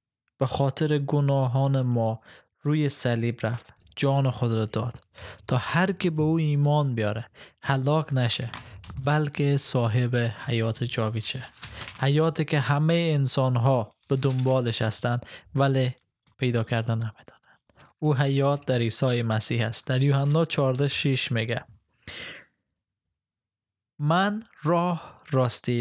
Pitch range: 115-140 Hz